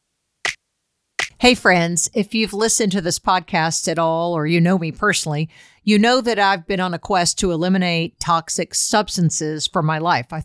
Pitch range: 175-225 Hz